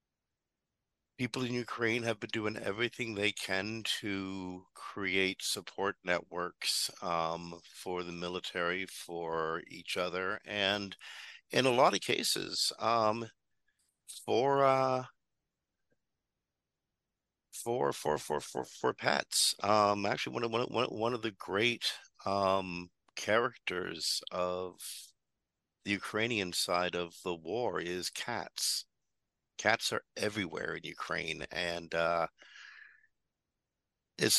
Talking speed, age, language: 110 wpm, 50-69, English